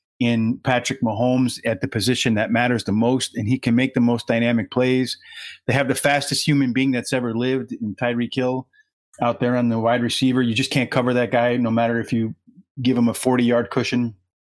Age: 30-49